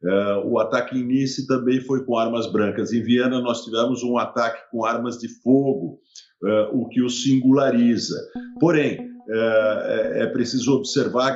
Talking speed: 165 wpm